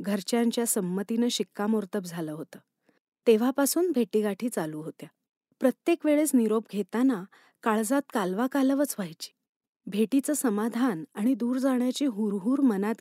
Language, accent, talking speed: Marathi, native, 110 wpm